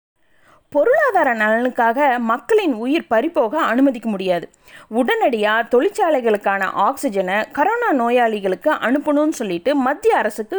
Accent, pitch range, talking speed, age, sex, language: native, 220-330 Hz, 90 wpm, 30-49, female, Tamil